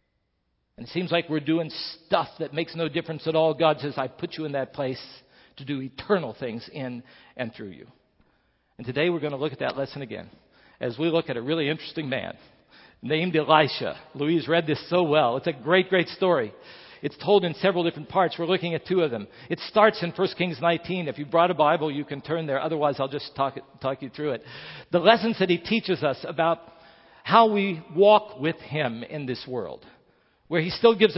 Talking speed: 220 wpm